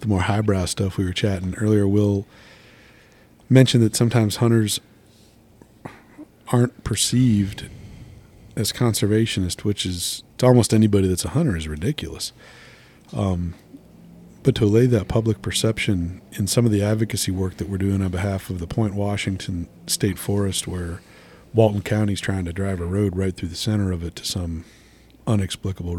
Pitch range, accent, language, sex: 95-110 Hz, American, English, male